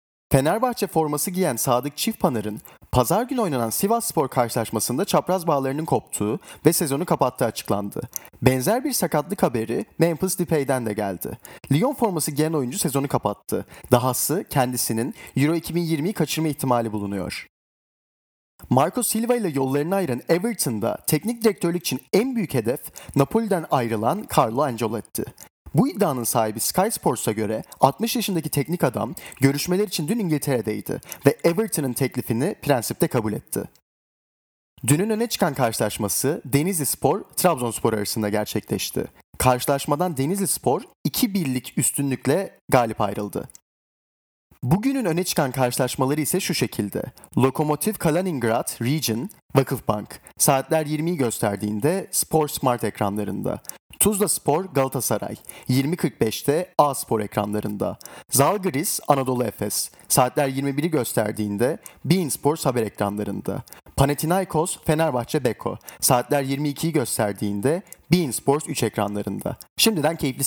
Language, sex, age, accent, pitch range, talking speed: Turkish, male, 40-59, native, 115-170 Hz, 115 wpm